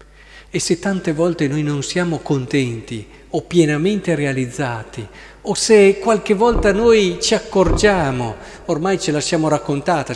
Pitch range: 140-185 Hz